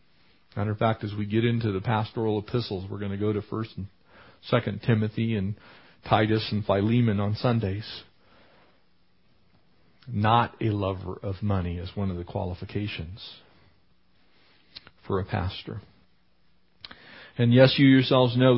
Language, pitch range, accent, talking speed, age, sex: English, 90-115 Hz, American, 140 wpm, 50-69, male